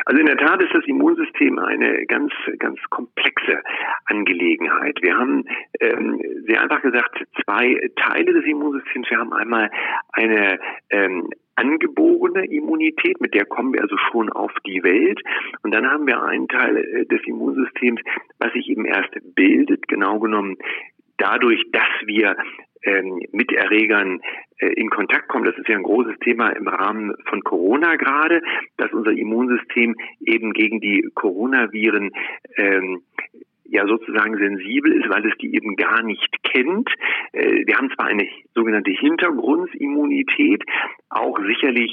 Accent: German